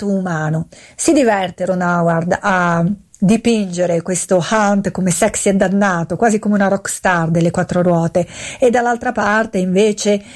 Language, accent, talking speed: Italian, native, 140 wpm